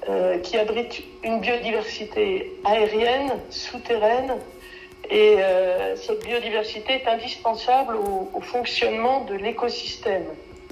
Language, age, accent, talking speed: French, 60-79, French, 95 wpm